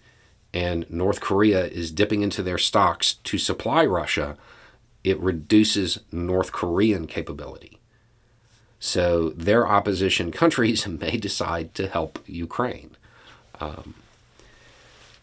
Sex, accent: male, American